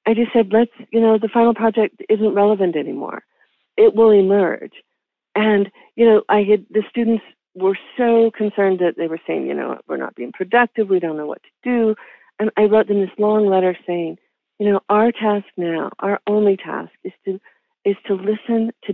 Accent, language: American, English